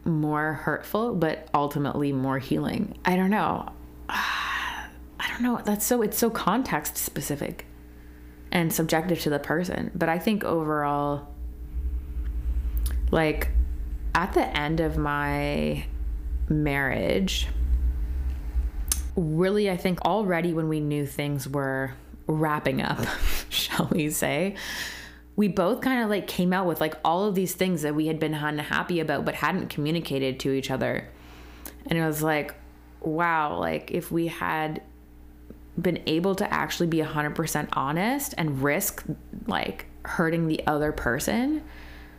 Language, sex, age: English, female, 20-39